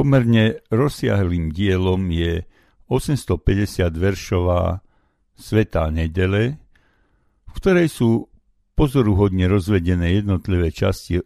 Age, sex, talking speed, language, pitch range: 60-79, male, 80 wpm, Slovak, 80-105 Hz